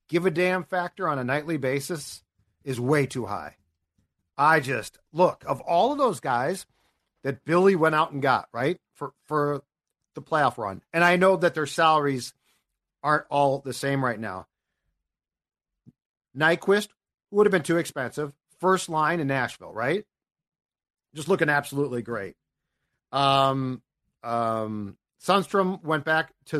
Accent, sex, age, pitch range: American, male, 50-69, 130-180 Hz